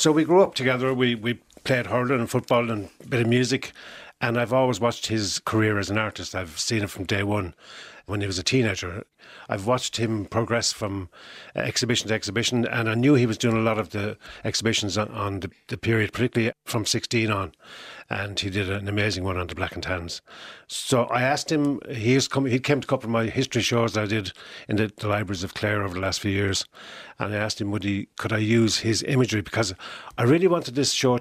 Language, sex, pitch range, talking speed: English, male, 100-125 Hz, 235 wpm